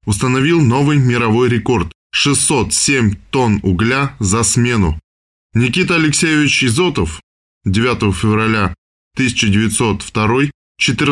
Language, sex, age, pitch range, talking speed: Russian, male, 20-39, 105-145 Hz, 80 wpm